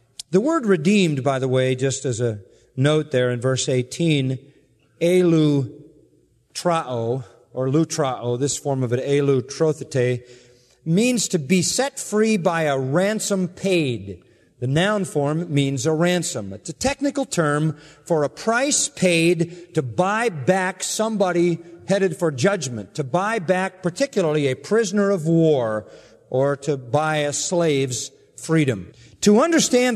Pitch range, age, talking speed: 130-185 Hz, 40-59, 140 wpm